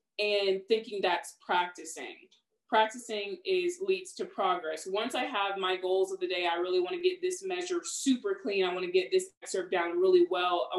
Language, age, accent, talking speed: English, 20-39, American, 200 wpm